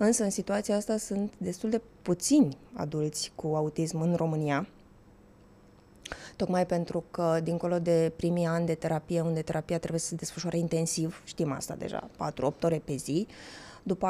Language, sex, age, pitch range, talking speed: Romanian, female, 20-39, 165-190 Hz, 155 wpm